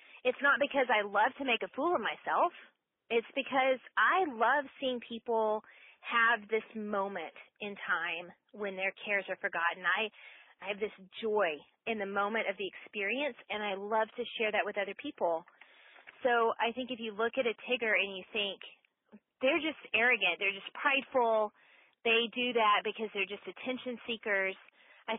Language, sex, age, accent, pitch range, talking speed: English, female, 30-49, American, 195-240 Hz, 175 wpm